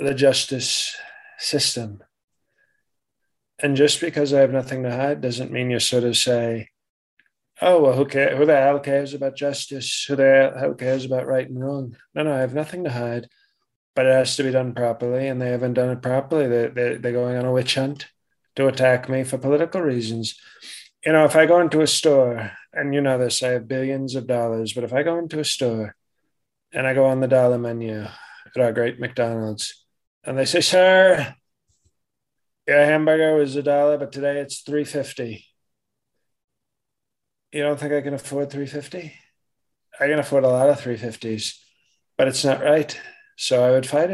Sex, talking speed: male, 190 wpm